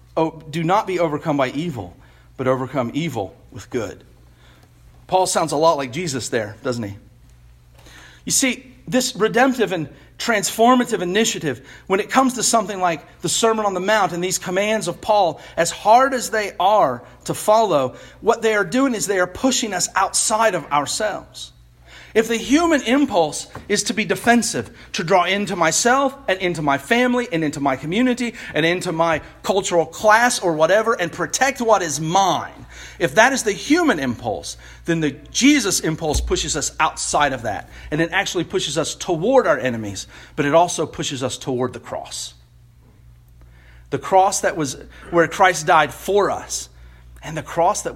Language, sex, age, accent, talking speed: English, male, 40-59, American, 175 wpm